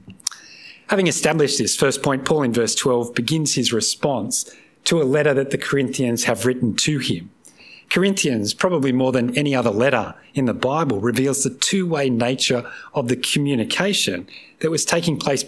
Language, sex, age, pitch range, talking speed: English, male, 40-59, 125-170 Hz, 165 wpm